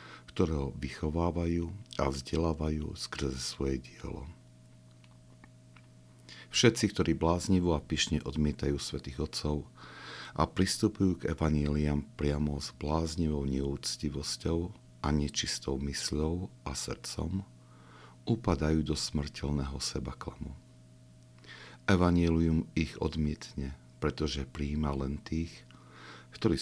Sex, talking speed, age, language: male, 90 wpm, 60-79, Slovak